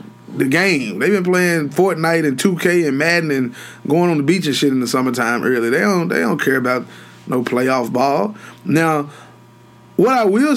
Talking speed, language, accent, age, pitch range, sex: 195 wpm, English, American, 20-39, 150-235 Hz, male